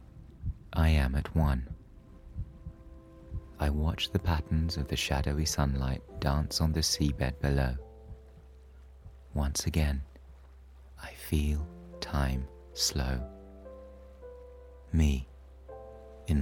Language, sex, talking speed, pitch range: English, male, 90 wpm, 65-90 Hz